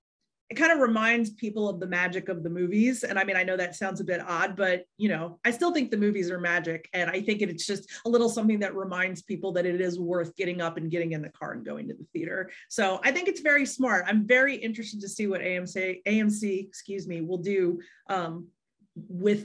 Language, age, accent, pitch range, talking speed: English, 30-49, American, 175-210 Hz, 240 wpm